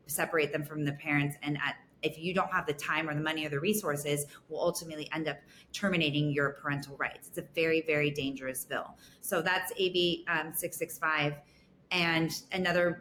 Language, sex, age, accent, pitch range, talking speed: English, female, 30-49, American, 150-185 Hz, 185 wpm